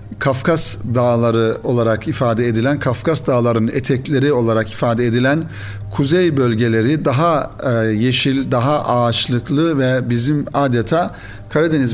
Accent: native